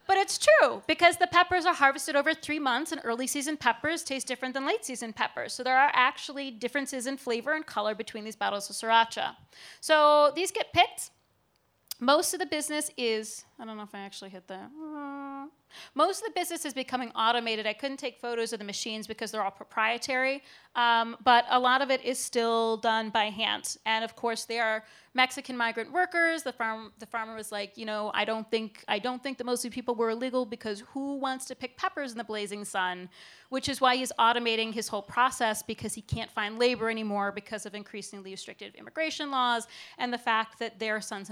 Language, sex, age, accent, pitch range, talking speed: English, female, 30-49, American, 220-275 Hz, 210 wpm